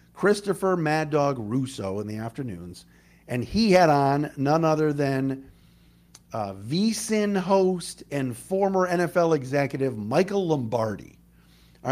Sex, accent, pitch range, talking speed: male, American, 100-165 Hz, 125 wpm